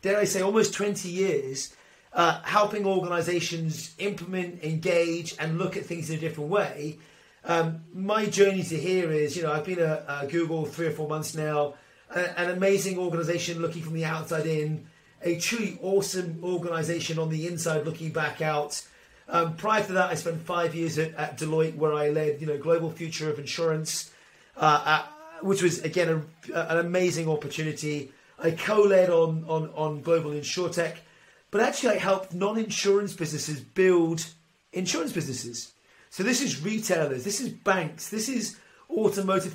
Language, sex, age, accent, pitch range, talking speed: English, male, 30-49, British, 160-195 Hz, 170 wpm